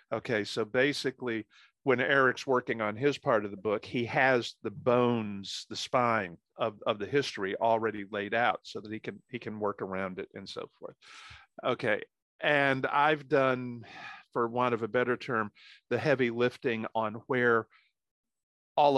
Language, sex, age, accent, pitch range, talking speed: English, male, 50-69, American, 110-130 Hz, 165 wpm